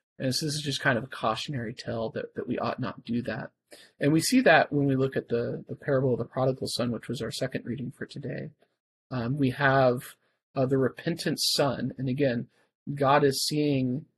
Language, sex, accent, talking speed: English, male, American, 210 wpm